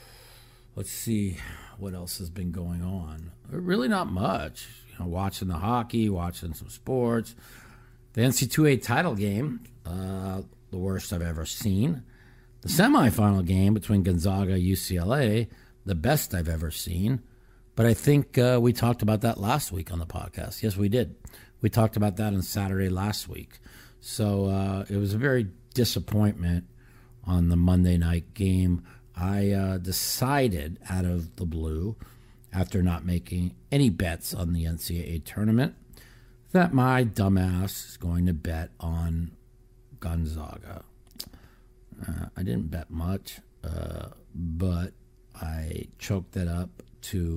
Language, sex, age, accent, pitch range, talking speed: English, male, 50-69, American, 90-120 Hz, 145 wpm